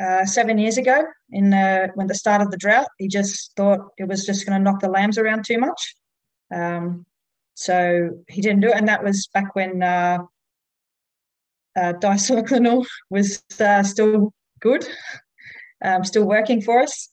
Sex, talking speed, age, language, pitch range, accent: female, 170 wpm, 20-39, English, 180-210 Hz, Australian